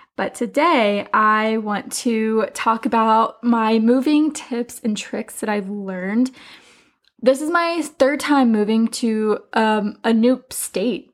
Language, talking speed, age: English, 140 wpm, 10-29